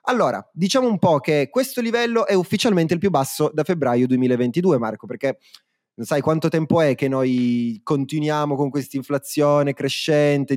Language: Italian